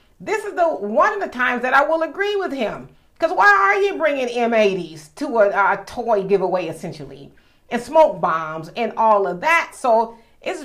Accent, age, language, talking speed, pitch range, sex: American, 40-59, English, 190 wpm, 170-230 Hz, female